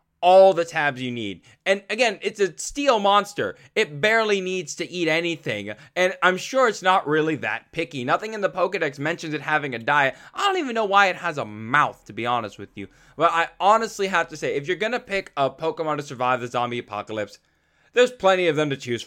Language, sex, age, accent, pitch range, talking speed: English, male, 10-29, American, 135-185 Hz, 225 wpm